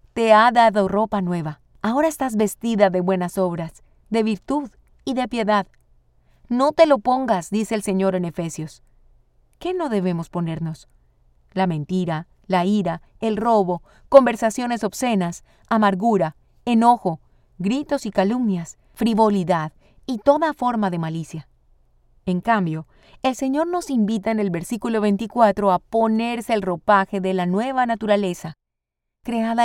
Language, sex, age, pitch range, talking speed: Spanish, female, 30-49, 175-230 Hz, 135 wpm